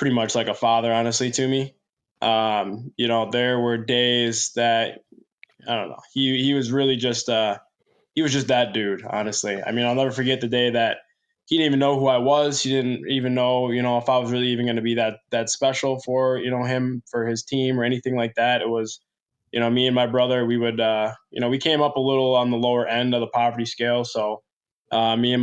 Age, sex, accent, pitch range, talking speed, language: 20-39, male, American, 115-125 Hz, 245 wpm, English